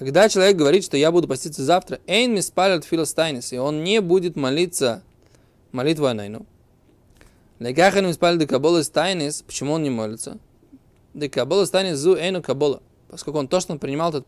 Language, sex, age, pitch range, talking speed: Russian, male, 20-39, 135-185 Hz, 160 wpm